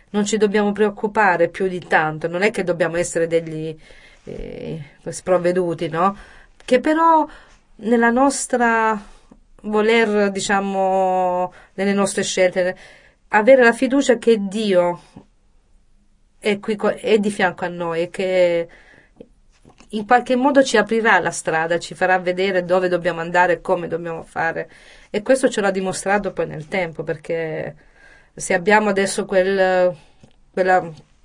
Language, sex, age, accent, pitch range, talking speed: Italian, female, 30-49, native, 175-220 Hz, 135 wpm